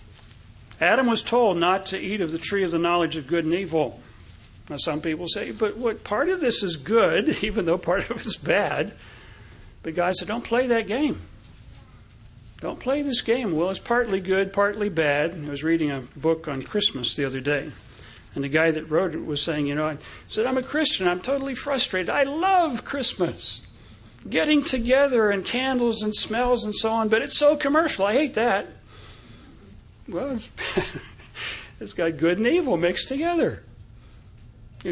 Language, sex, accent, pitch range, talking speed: English, male, American, 135-220 Hz, 185 wpm